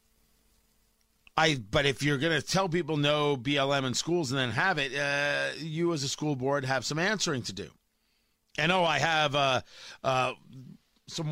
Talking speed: 175 wpm